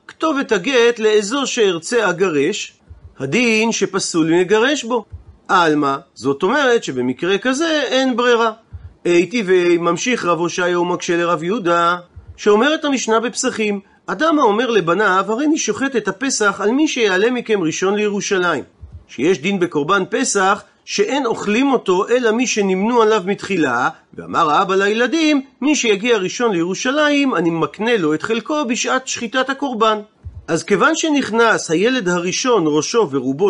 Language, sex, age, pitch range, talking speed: Hebrew, male, 40-59, 175-245 Hz, 135 wpm